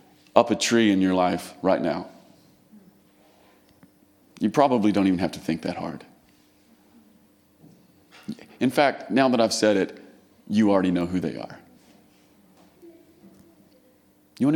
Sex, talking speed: male, 130 wpm